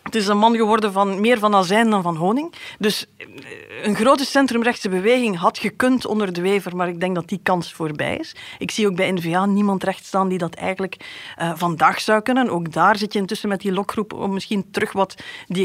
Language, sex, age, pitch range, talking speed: Dutch, female, 40-59, 185-235 Hz, 220 wpm